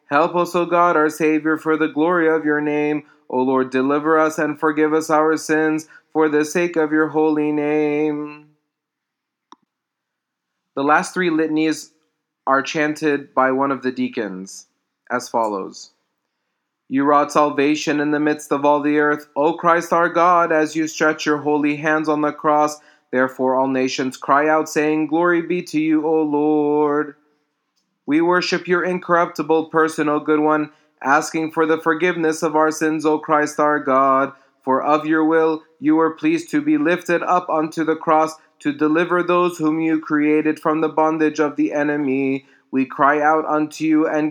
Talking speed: 170 wpm